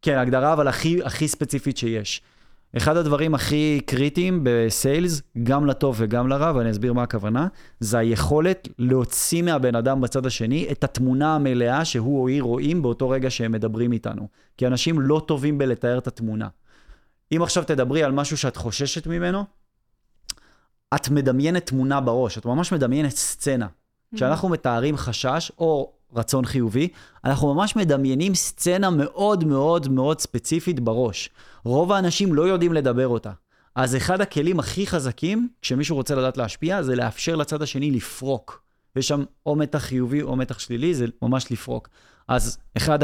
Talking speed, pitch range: 155 wpm, 120-150 Hz